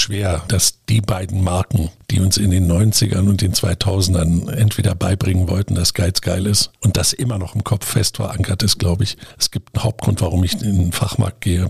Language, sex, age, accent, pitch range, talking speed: German, male, 60-79, German, 95-110 Hz, 210 wpm